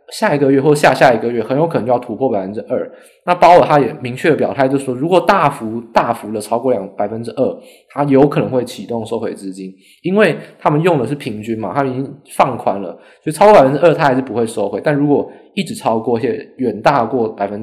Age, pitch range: 20-39, 120-155 Hz